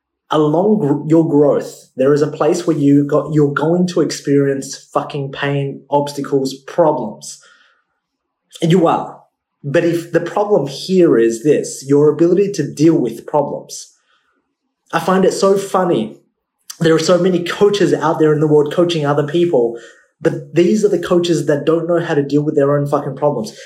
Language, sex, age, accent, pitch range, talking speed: English, male, 20-39, Australian, 145-175 Hz, 180 wpm